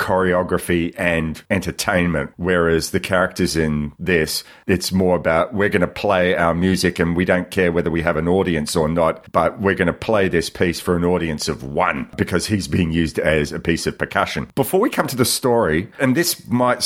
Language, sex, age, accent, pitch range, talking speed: English, male, 40-59, Australian, 85-100 Hz, 205 wpm